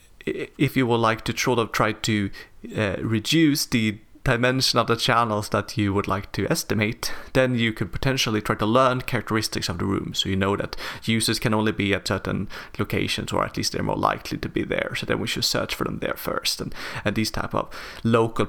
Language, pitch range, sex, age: English, 105-125 Hz, male, 30-49